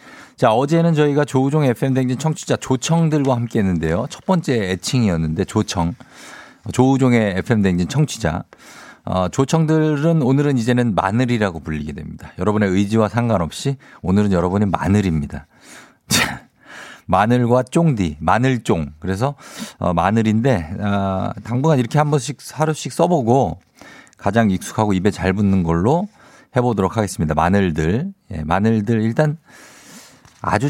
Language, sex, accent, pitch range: Korean, male, native, 95-140 Hz